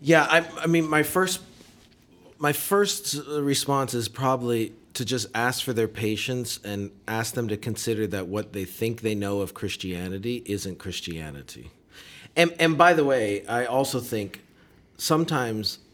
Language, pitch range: English, 100-130 Hz